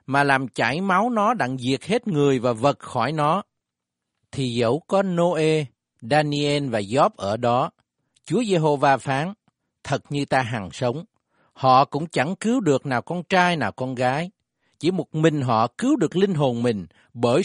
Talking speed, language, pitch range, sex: 175 wpm, Vietnamese, 115-160 Hz, male